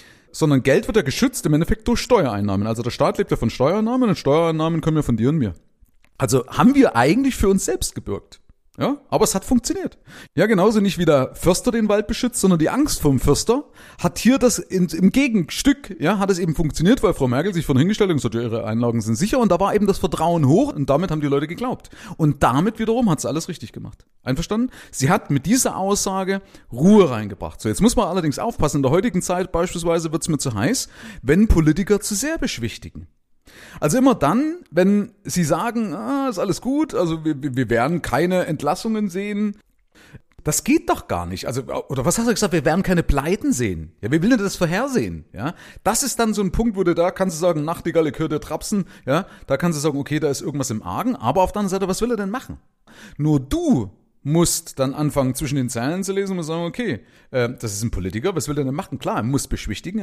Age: 30-49